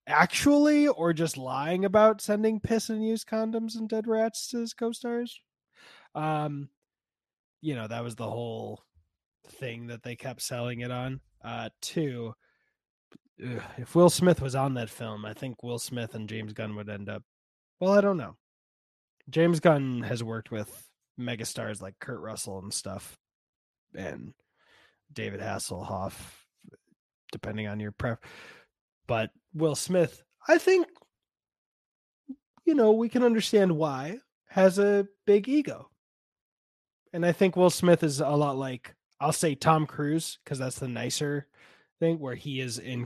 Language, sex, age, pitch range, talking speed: English, male, 20-39, 110-175 Hz, 150 wpm